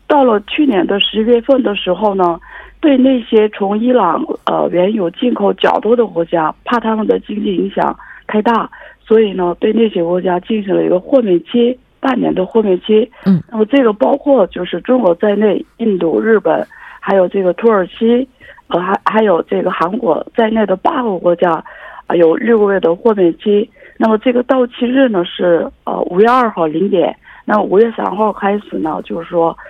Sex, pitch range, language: female, 175-225 Hz, Korean